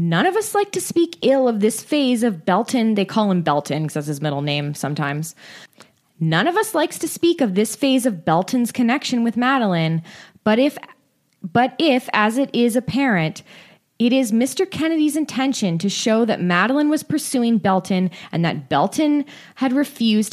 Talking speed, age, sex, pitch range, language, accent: 180 wpm, 20-39, female, 175-240 Hz, English, American